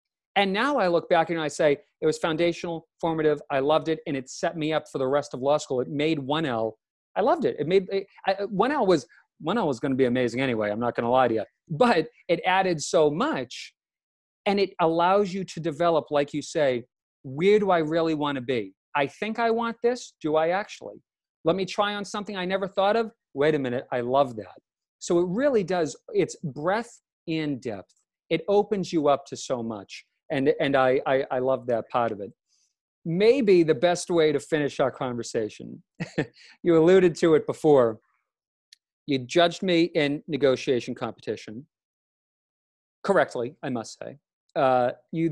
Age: 40-59